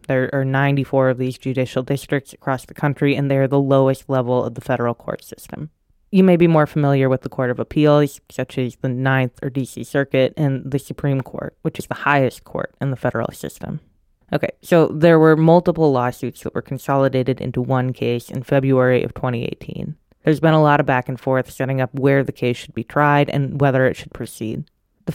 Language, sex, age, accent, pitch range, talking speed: English, female, 20-39, American, 130-150 Hz, 210 wpm